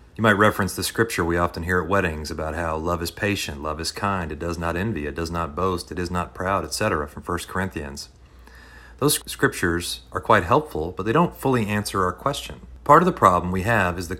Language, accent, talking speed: English, American, 230 wpm